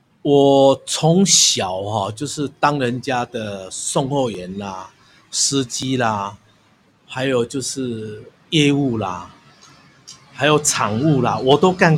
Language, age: Chinese, 50-69